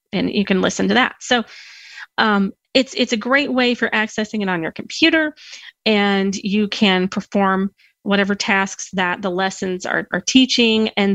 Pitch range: 195-255 Hz